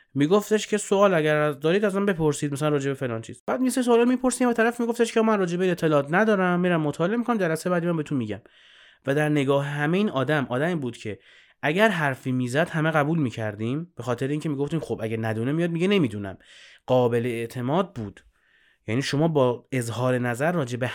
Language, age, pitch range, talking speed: Persian, 30-49, 115-155 Hz, 200 wpm